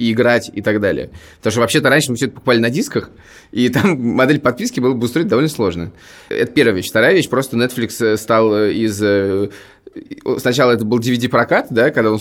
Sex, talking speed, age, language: male, 190 wpm, 20-39, Russian